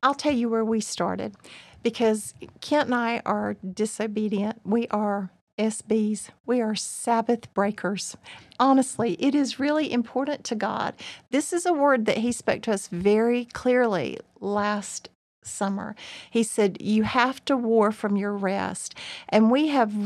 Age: 50-69